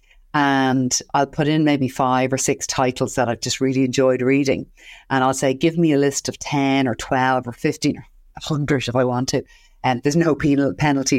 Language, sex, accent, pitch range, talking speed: English, female, Irish, 130-150 Hz, 205 wpm